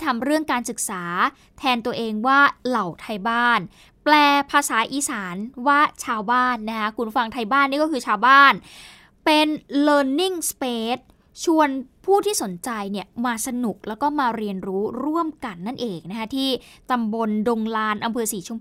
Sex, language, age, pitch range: female, Thai, 20-39, 225-285 Hz